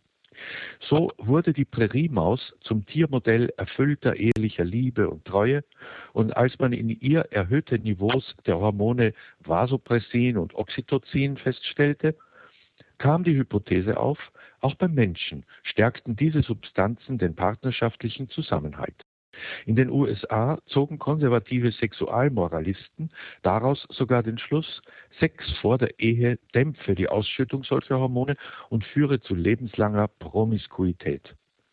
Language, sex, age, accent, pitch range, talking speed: German, male, 60-79, German, 100-135 Hz, 115 wpm